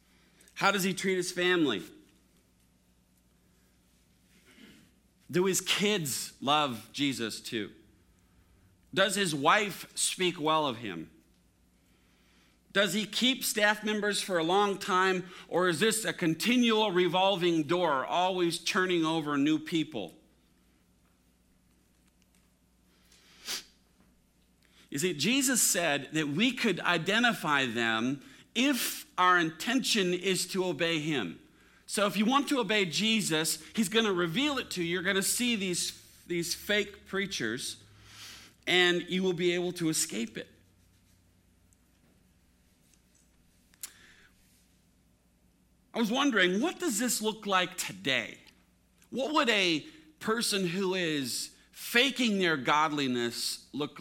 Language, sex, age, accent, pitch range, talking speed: English, male, 50-69, American, 120-200 Hz, 115 wpm